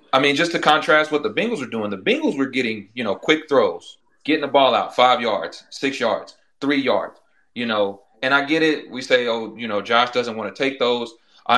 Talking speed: 240 wpm